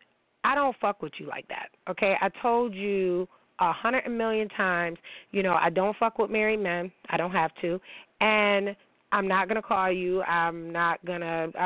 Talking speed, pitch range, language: 185 wpm, 170-215 Hz, English